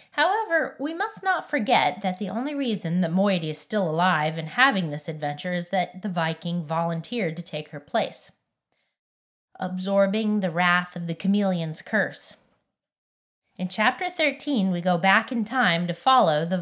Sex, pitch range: female, 165-215 Hz